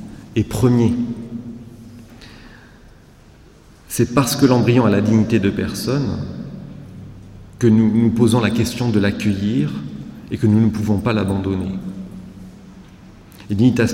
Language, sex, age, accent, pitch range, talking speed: French, male, 40-59, French, 100-120 Hz, 120 wpm